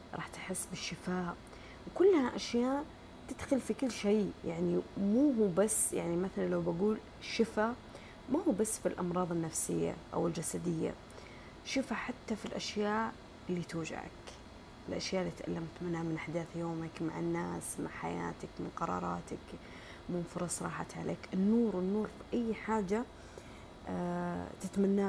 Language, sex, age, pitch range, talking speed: Arabic, female, 30-49, 170-210 Hz, 130 wpm